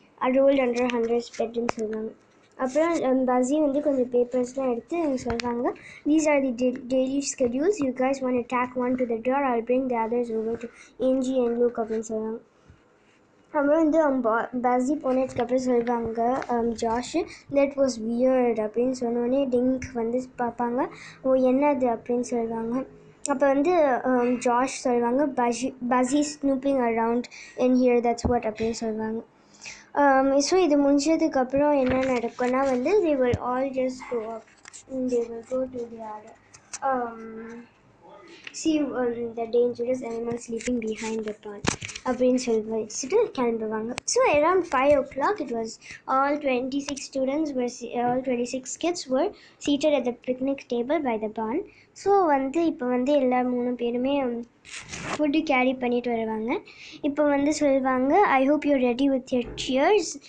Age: 20-39